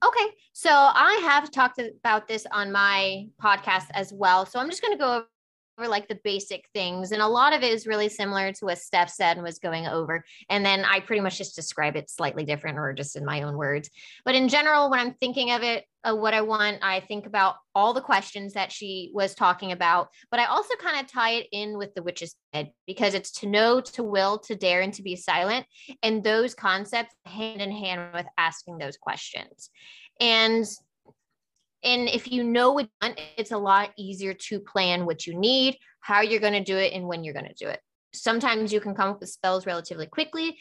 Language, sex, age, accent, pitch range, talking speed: English, female, 20-39, American, 185-230 Hz, 225 wpm